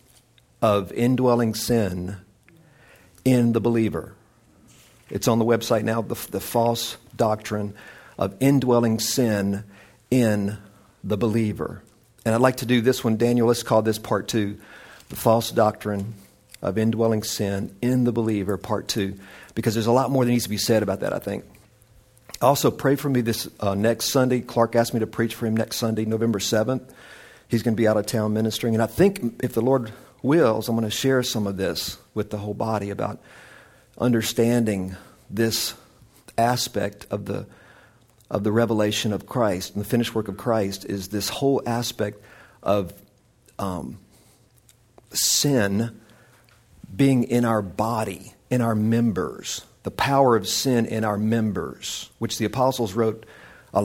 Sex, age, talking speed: male, 50-69, 165 wpm